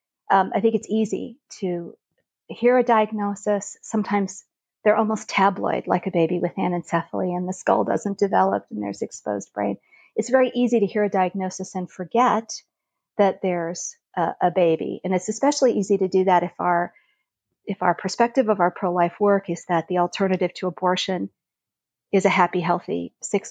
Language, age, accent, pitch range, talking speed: English, 50-69, American, 180-210 Hz, 175 wpm